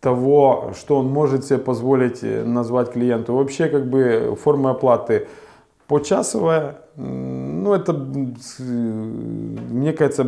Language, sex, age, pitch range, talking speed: Ukrainian, male, 20-39, 120-150 Hz, 105 wpm